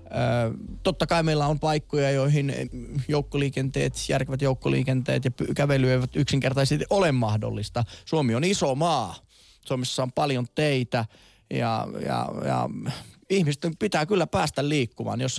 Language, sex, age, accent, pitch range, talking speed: Finnish, male, 20-39, native, 120-150 Hz, 120 wpm